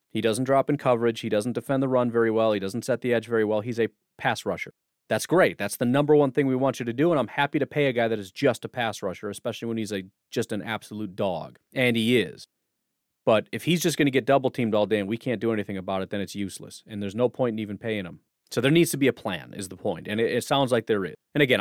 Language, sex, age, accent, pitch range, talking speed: English, male, 30-49, American, 105-130 Hz, 295 wpm